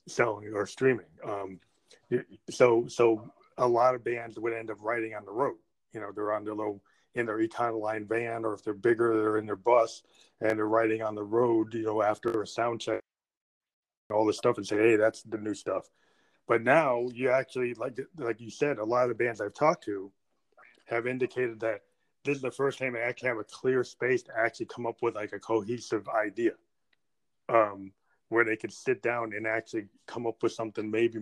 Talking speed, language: 215 wpm, English